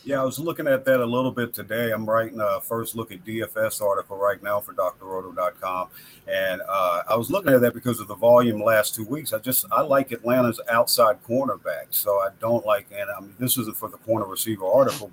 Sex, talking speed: male, 230 wpm